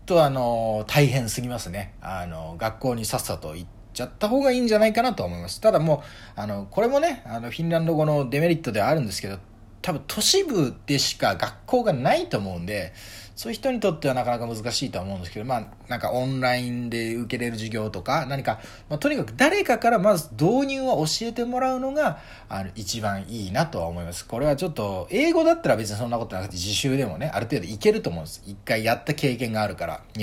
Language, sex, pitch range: Japanese, male, 100-155 Hz